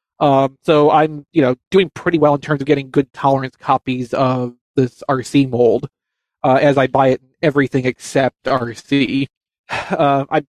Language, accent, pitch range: English, American, 135-165 Hz